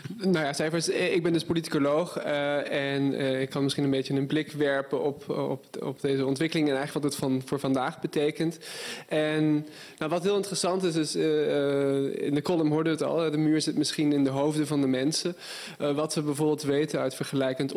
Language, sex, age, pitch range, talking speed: Dutch, male, 20-39, 140-165 Hz, 215 wpm